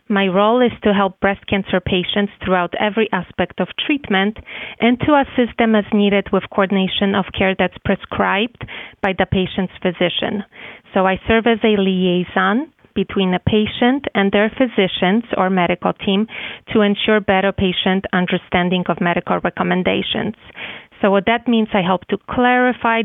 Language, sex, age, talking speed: English, female, 30-49, 155 wpm